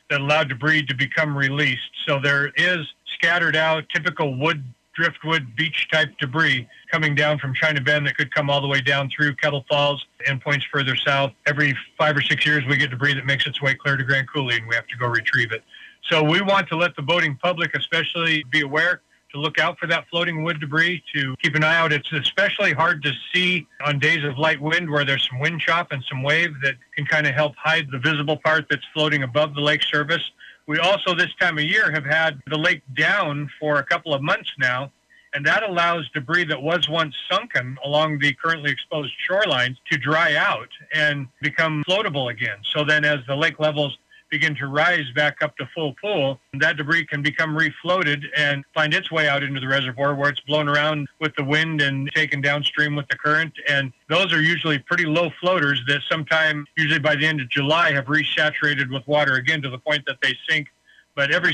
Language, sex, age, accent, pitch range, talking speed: English, male, 40-59, American, 140-160 Hz, 215 wpm